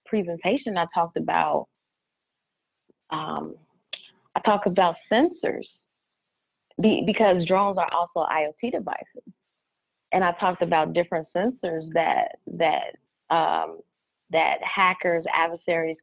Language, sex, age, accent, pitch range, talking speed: English, female, 30-49, American, 170-220 Hz, 105 wpm